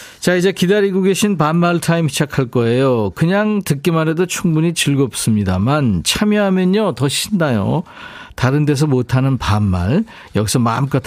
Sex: male